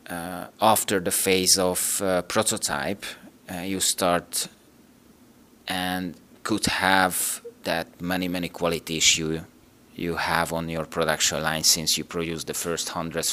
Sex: male